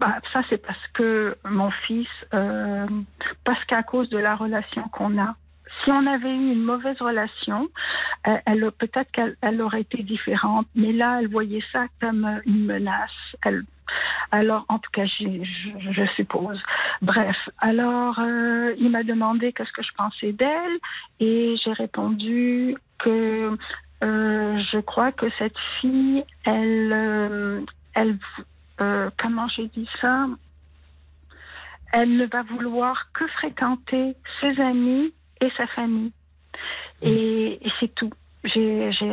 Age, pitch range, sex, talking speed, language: 60-79, 215-245 Hz, female, 140 wpm, French